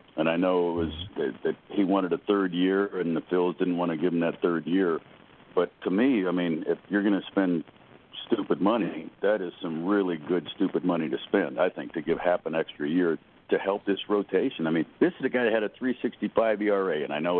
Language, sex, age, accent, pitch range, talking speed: English, male, 60-79, American, 90-115 Hz, 240 wpm